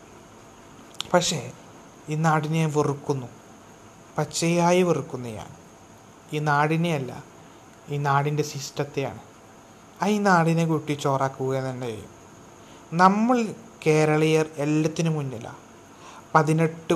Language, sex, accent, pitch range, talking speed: Malayalam, male, native, 115-155 Hz, 80 wpm